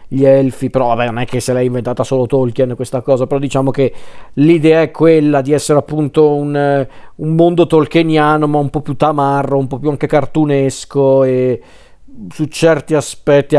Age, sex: 40-59, male